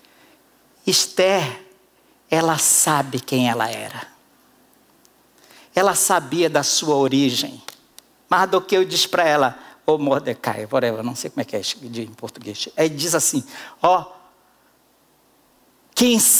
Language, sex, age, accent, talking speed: Portuguese, male, 60-79, Brazilian, 130 wpm